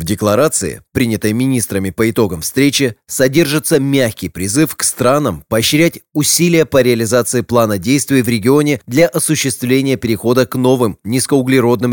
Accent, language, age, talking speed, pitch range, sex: native, Russian, 30-49, 130 wpm, 115-140 Hz, male